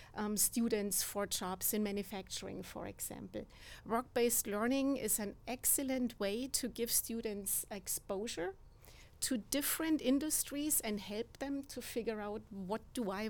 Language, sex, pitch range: English, female, 215-260 Hz